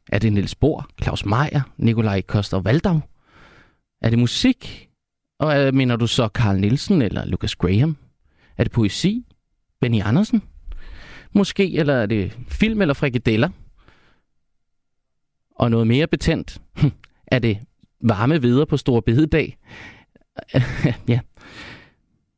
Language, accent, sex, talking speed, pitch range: Danish, native, male, 120 wpm, 115-150 Hz